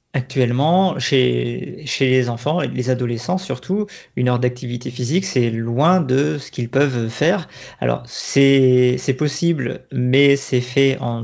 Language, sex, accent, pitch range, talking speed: French, male, French, 120-145 Hz, 150 wpm